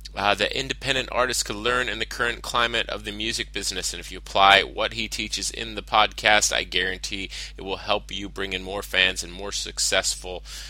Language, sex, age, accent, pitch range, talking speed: English, male, 20-39, American, 90-115 Hz, 210 wpm